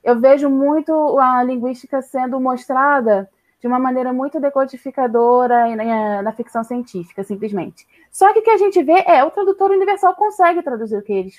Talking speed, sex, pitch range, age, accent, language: 170 wpm, female, 230-325 Hz, 20-39, Brazilian, Portuguese